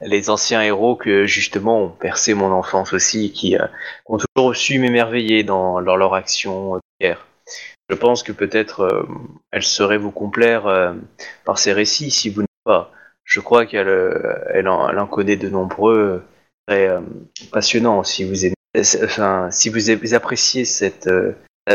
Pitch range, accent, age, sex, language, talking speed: 95-115 Hz, French, 20-39, male, French, 170 wpm